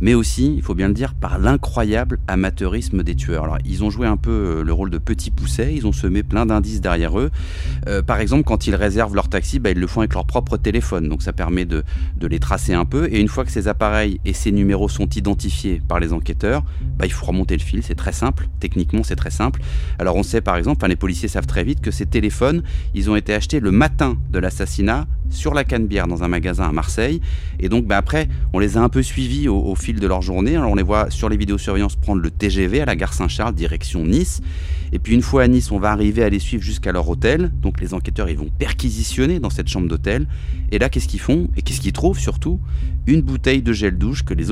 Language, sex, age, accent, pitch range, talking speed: French, male, 30-49, French, 70-100 Hz, 250 wpm